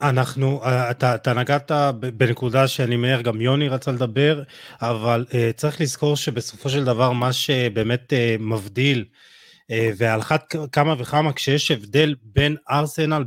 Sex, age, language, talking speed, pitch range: male, 30-49, Hebrew, 140 wpm, 120-155 Hz